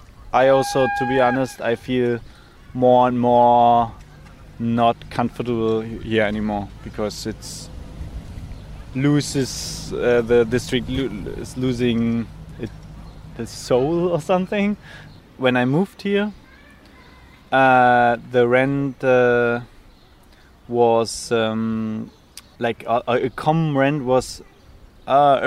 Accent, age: German, 20-39